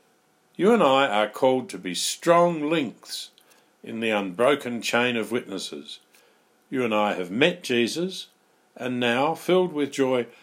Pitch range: 110-150 Hz